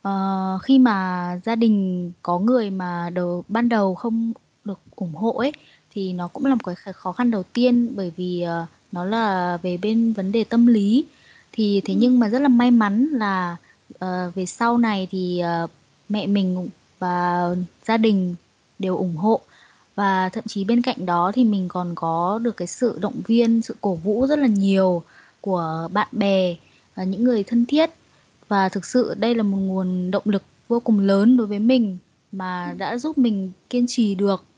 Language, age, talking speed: Vietnamese, 20-39, 195 wpm